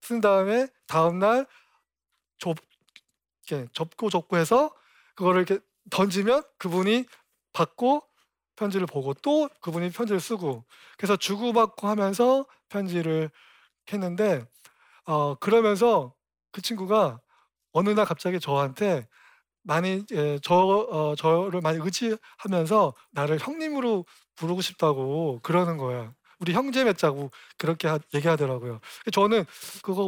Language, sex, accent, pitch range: Korean, male, native, 155-210 Hz